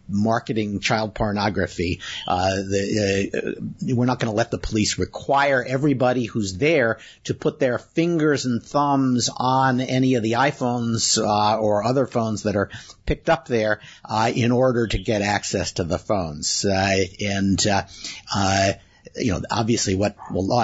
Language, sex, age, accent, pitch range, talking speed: English, male, 50-69, American, 100-125 Hz, 160 wpm